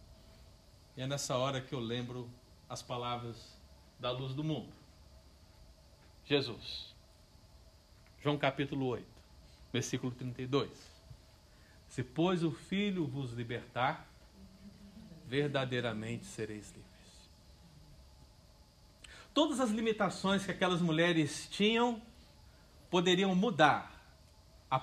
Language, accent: Portuguese, Brazilian